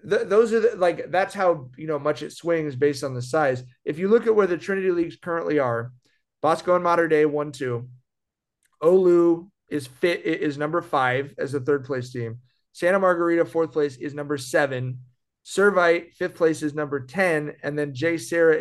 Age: 30-49